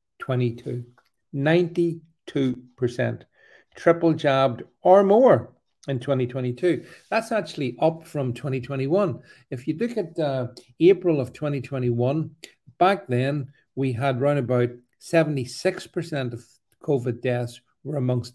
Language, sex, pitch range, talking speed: English, male, 125-170 Hz, 100 wpm